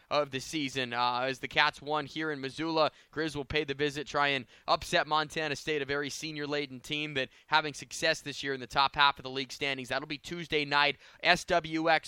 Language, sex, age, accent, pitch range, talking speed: English, male, 20-39, American, 145-170 Hz, 215 wpm